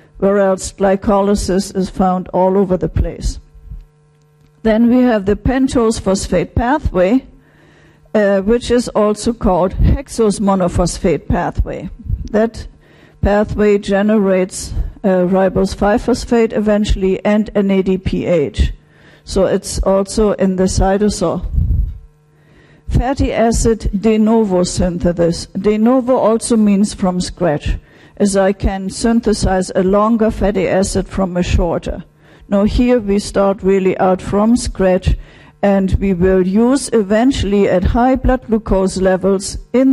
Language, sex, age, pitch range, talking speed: English, female, 50-69, 185-220 Hz, 120 wpm